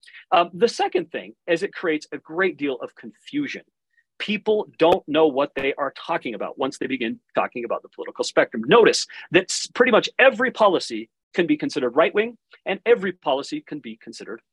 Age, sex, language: 40-59, male, English